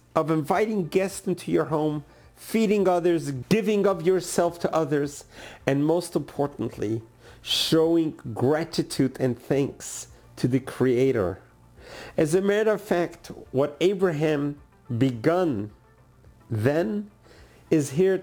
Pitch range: 135-185 Hz